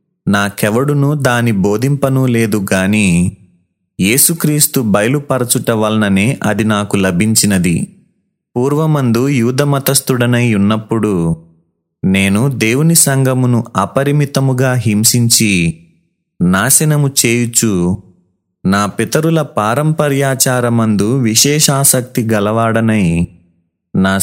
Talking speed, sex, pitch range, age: 70 wpm, male, 100-135 Hz, 30-49